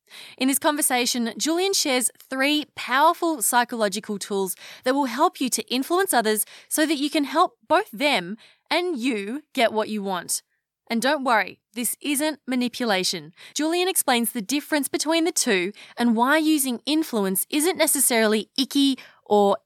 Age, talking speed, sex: 20-39, 155 wpm, female